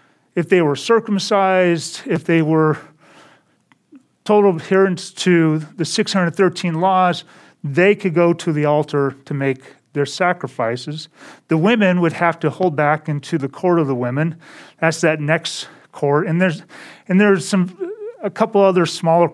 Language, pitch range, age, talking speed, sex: English, 155-200 Hz, 40-59, 150 wpm, male